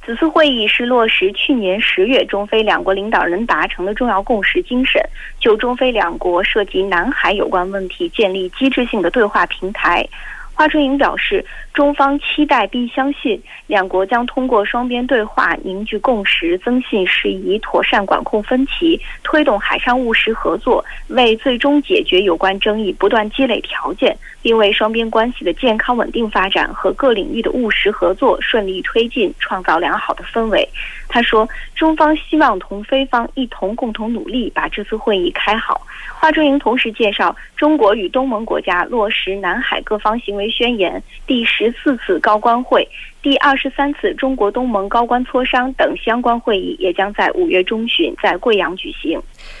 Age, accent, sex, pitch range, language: 20-39, Chinese, female, 215-280 Hz, Korean